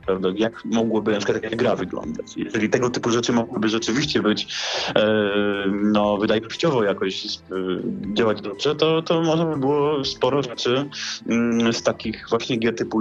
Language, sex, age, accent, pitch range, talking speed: Polish, male, 30-49, native, 110-145 Hz, 155 wpm